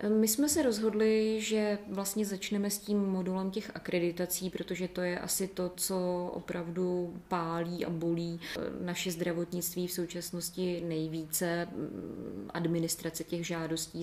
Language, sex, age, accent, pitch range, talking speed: Czech, female, 20-39, native, 165-175 Hz, 130 wpm